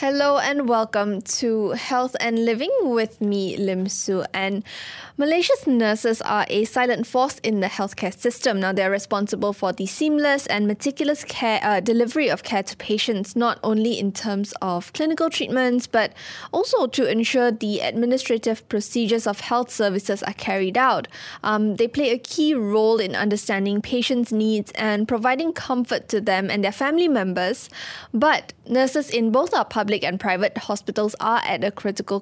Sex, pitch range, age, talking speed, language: female, 205-250 Hz, 10-29, 165 wpm, English